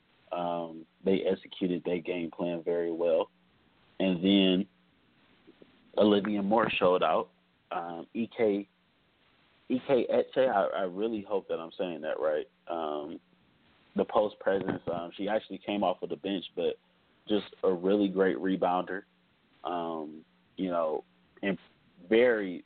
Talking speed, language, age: 130 wpm, English, 20-39